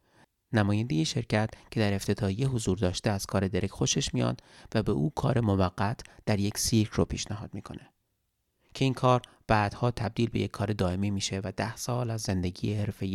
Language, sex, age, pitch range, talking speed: Persian, male, 30-49, 95-120 Hz, 180 wpm